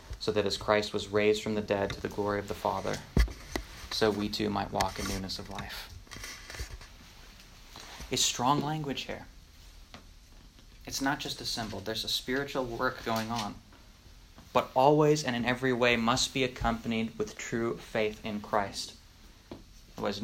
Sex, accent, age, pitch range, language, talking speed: male, American, 30-49, 100-140 Hz, English, 160 wpm